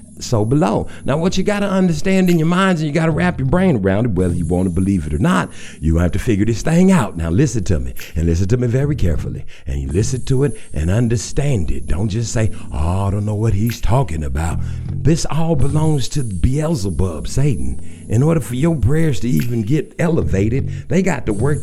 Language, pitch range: English, 105-165 Hz